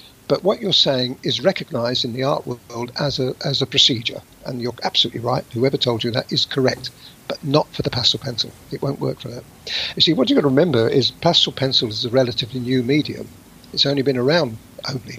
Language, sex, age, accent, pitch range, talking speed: English, male, 50-69, British, 120-140 Hz, 220 wpm